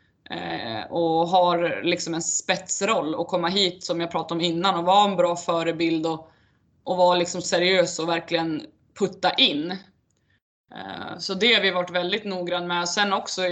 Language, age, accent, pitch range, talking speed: Swedish, 20-39, native, 175-205 Hz, 165 wpm